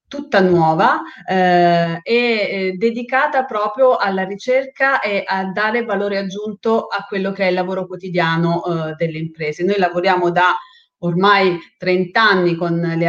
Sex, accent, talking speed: female, native, 140 wpm